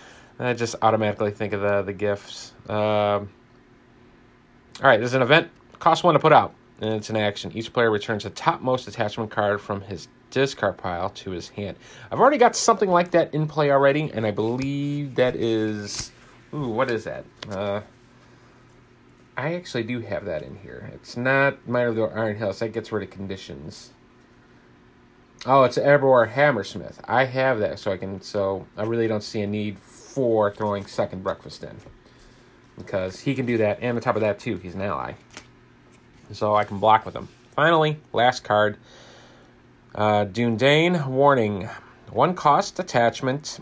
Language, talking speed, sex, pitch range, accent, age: English, 175 wpm, male, 105-130 Hz, American, 30-49